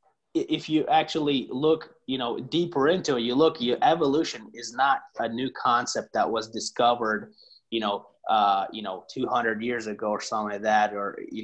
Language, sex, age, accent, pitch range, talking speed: English, male, 30-49, American, 115-150 Hz, 190 wpm